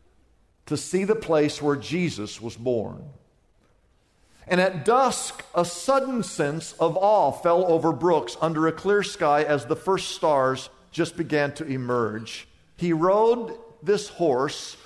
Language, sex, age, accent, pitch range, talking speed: English, male, 50-69, American, 120-170 Hz, 140 wpm